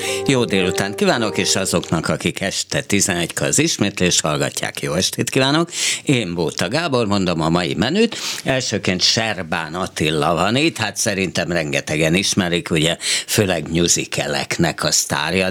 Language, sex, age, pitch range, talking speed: Hungarian, male, 60-79, 90-130 Hz, 135 wpm